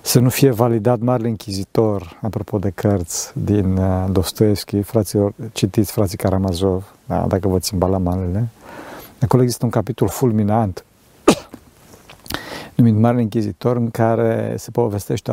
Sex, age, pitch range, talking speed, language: male, 50-69, 105-145 Hz, 125 wpm, Romanian